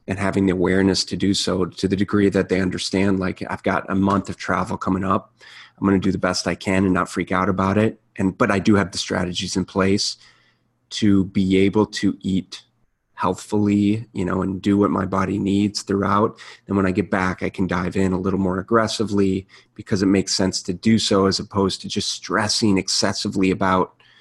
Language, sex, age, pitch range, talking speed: English, male, 30-49, 95-110 Hz, 215 wpm